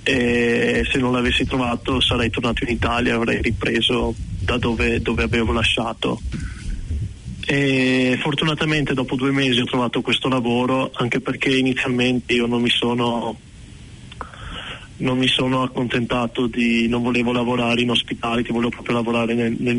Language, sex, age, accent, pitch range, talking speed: Italian, male, 20-39, native, 115-130 Hz, 145 wpm